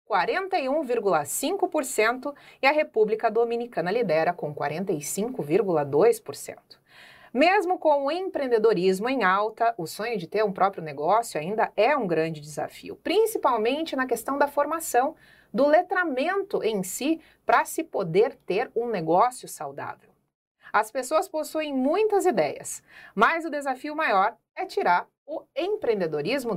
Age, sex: 30-49, female